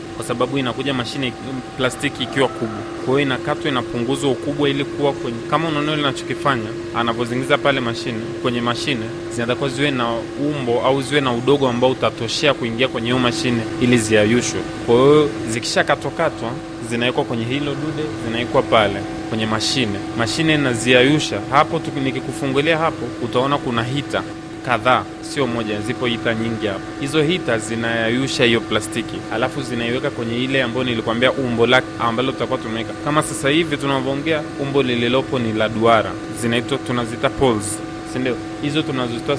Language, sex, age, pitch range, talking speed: Swahili, male, 20-39, 115-140 Hz, 150 wpm